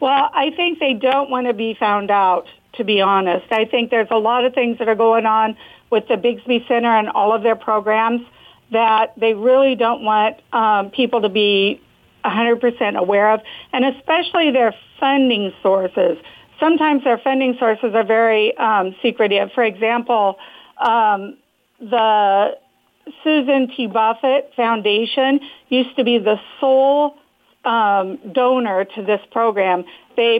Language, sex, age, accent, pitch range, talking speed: English, female, 50-69, American, 215-255 Hz, 150 wpm